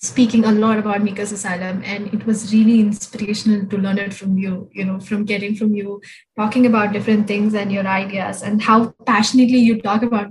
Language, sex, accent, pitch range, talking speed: English, female, Indian, 205-230 Hz, 205 wpm